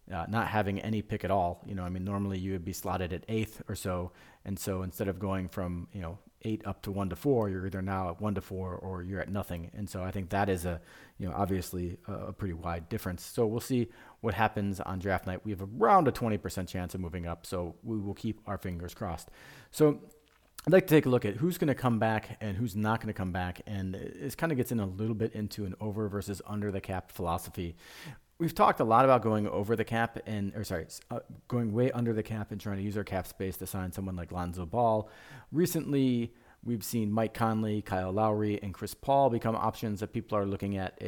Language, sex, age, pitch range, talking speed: English, male, 40-59, 95-110 Hz, 245 wpm